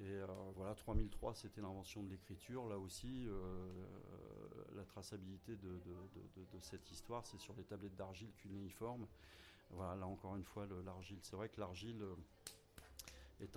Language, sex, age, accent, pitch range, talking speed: French, male, 30-49, French, 95-115 Hz, 170 wpm